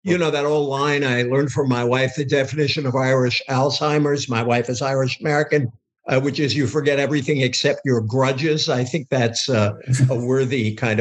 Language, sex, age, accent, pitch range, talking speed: English, male, 50-69, American, 135-175 Hz, 185 wpm